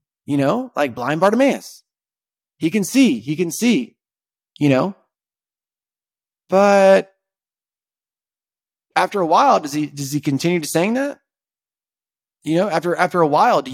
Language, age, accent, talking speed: English, 30-49, American, 140 wpm